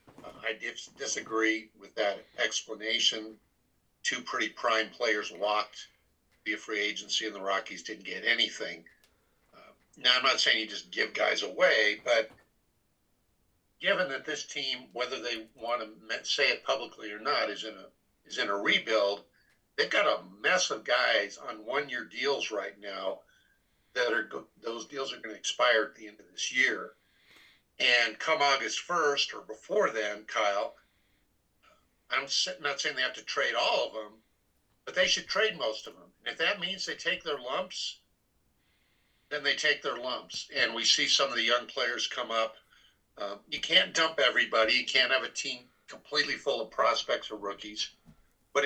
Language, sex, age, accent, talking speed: English, male, 50-69, American, 180 wpm